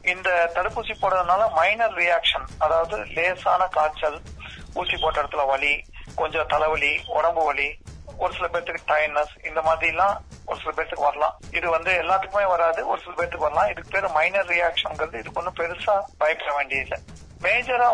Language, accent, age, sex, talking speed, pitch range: Tamil, native, 30-49, male, 130 wpm, 150-190 Hz